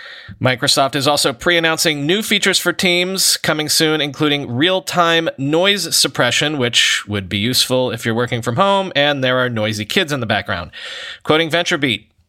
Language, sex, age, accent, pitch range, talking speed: English, male, 30-49, American, 130-175 Hz, 160 wpm